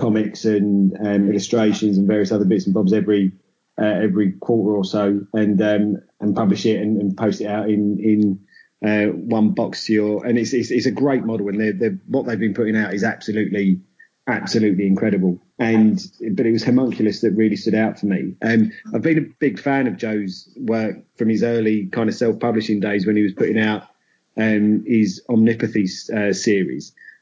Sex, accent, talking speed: male, British, 200 wpm